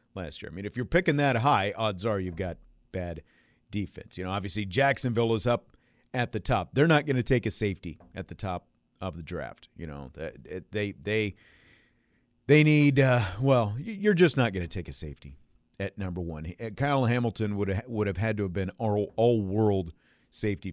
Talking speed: 205 wpm